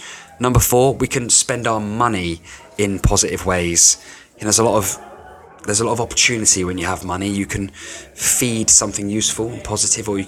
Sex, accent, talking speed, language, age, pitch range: male, British, 200 wpm, English, 20-39, 90-105 Hz